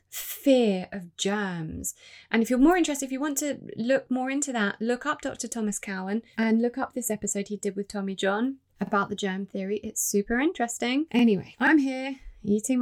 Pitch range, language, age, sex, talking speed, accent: 200-270 Hz, English, 20-39, female, 195 wpm, British